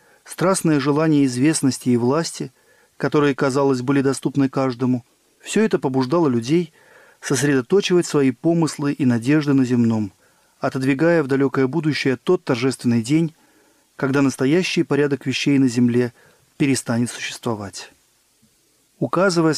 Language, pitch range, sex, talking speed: Russian, 130-160 Hz, male, 115 wpm